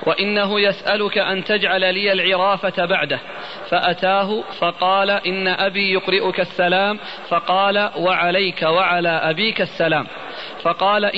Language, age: Arabic, 40-59